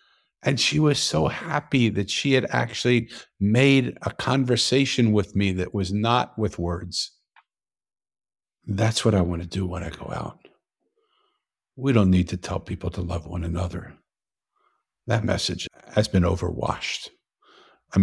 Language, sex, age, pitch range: English, male, 50-69, 90-120 Hz